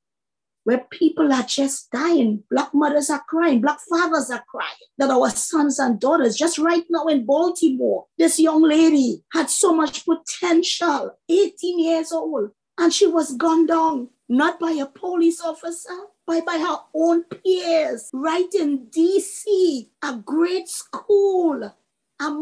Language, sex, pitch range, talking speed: English, female, 250-345 Hz, 145 wpm